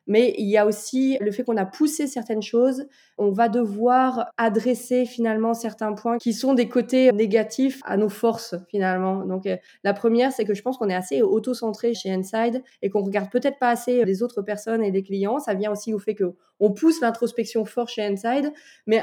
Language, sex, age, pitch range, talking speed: Dutch, female, 20-39, 205-245 Hz, 210 wpm